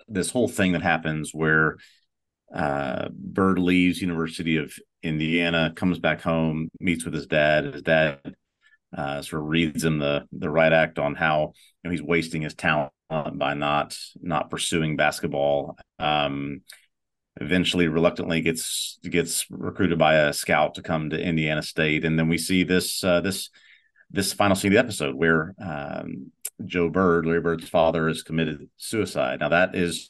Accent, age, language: American, 40-59, English